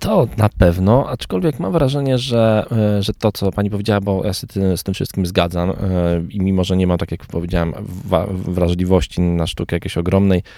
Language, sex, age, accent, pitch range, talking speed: Polish, male, 20-39, native, 80-95 Hz, 180 wpm